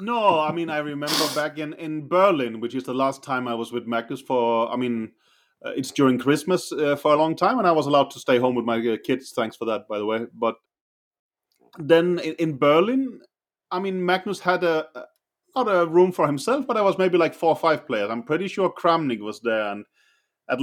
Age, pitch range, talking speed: 30-49, 125-180 Hz, 225 wpm